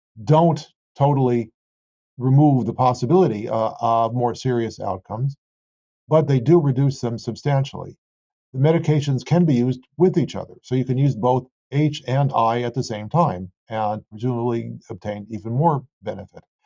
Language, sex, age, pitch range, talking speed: English, male, 50-69, 110-135 Hz, 150 wpm